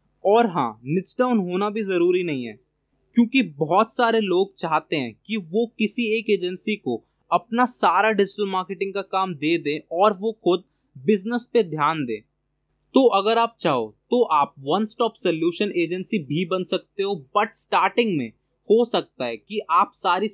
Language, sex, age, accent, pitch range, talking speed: Hindi, male, 20-39, native, 170-220 Hz, 175 wpm